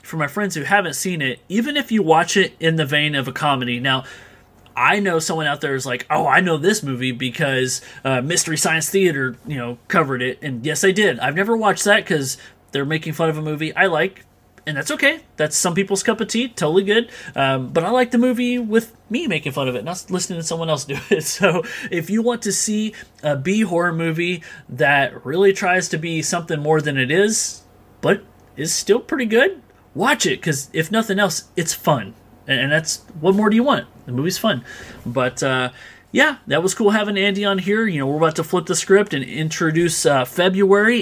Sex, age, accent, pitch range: male, 30-49, American, 140-195 Hz